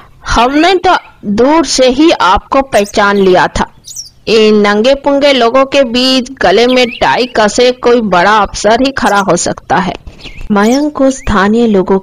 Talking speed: 155 wpm